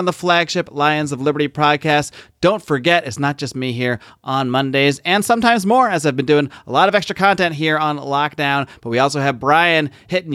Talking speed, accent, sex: 215 wpm, American, male